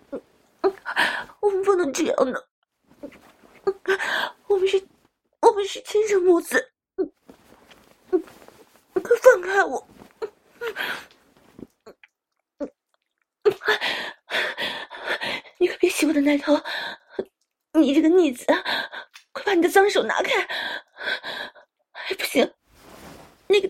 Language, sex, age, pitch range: Chinese, female, 30-49, 330-415 Hz